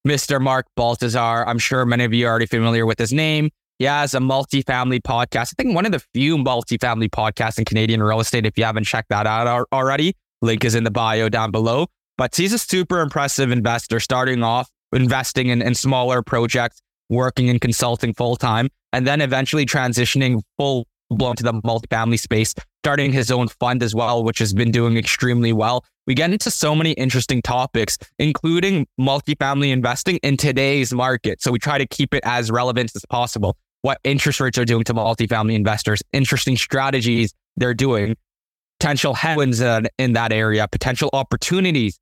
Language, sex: English, male